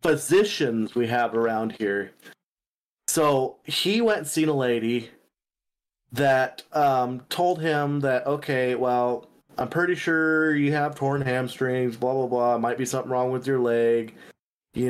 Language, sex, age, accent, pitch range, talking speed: English, male, 30-49, American, 120-145 Hz, 155 wpm